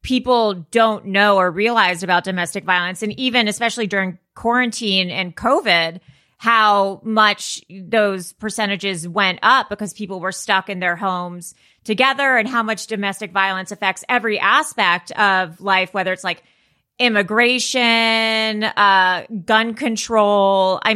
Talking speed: 135 wpm